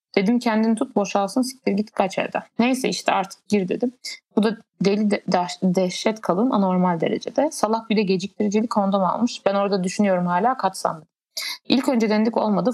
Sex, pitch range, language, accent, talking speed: female, 195-230 Hz, Turkish, native, 170 wpm